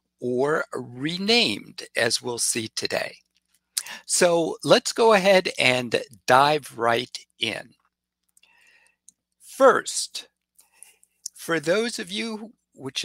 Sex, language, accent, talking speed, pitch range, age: male, English, American, 90 wpm, 115-165 Hz, 60-79